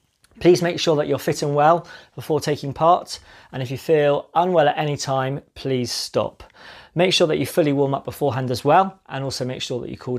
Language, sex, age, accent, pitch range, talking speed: English, male, 30-49, British, 145-190 Hz, 225 wpm